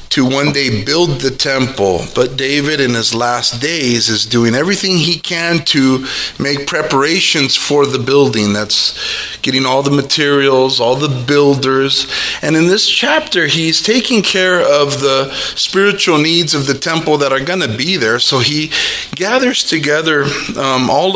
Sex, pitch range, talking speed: male, 135-165 Hz, 160 wpm